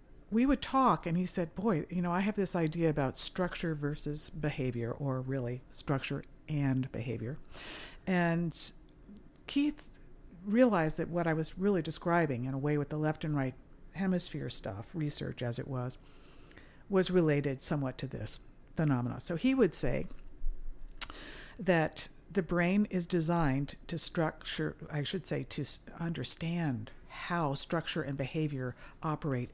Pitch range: 140-180 Hz